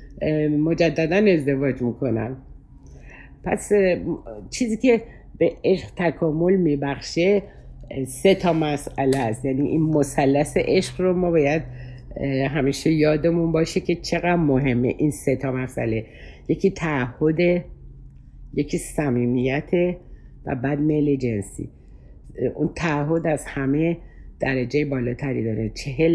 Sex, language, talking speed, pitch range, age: female, Persian, 110 wpm, 130-170 Hz, 60-79